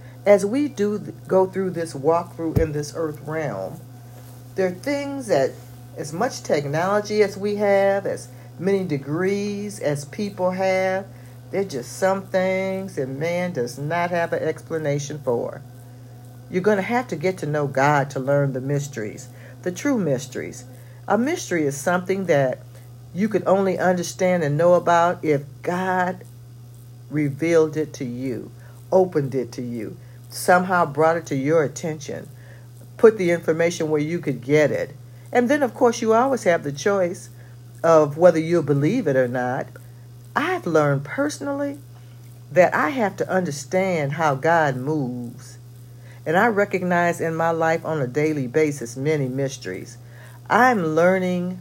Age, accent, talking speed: 60-79, American, 155 wpm